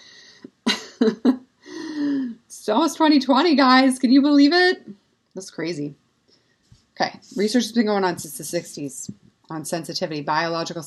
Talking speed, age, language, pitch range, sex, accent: 120 wpm, 30-49, English, 150-185 Hz, female, American